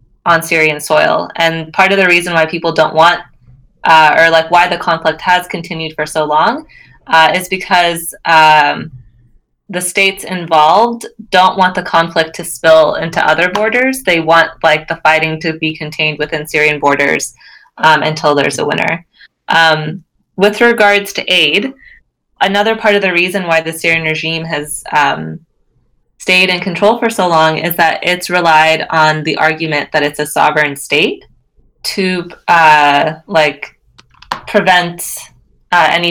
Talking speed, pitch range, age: 160 wpm, 155-185 Hz, 20-39